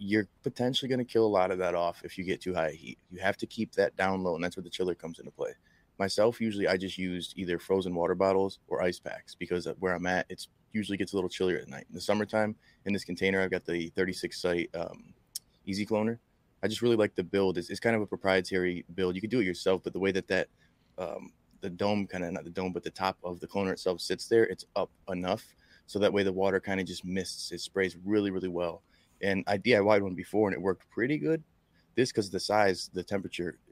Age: 20-39